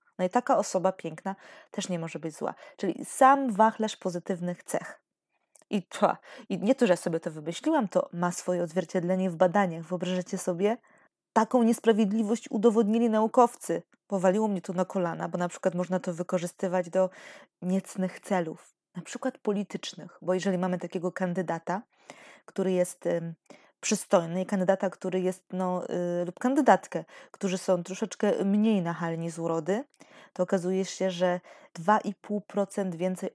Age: 20-39